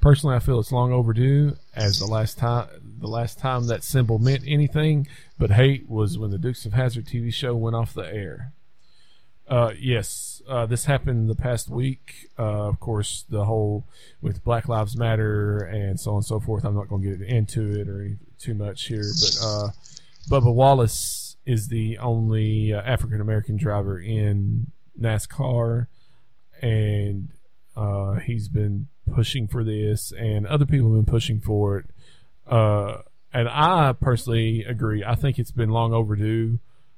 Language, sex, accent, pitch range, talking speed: English, male, American, 105-125 Hz, 170 wpm